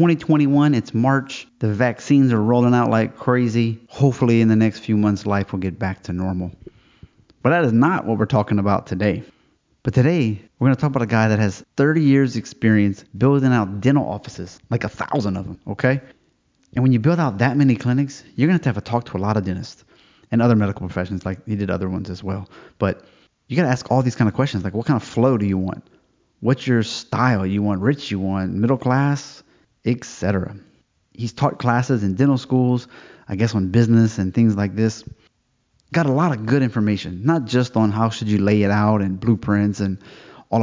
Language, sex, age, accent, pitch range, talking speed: English, male, 30-49, American, 100-130 Hz, 215 wpm